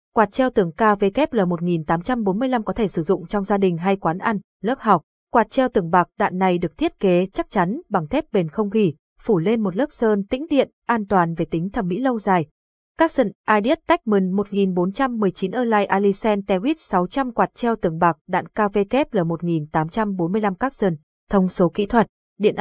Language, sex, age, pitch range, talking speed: Vietnamese, female, 20-39, 190-240 Hz, 185 wpm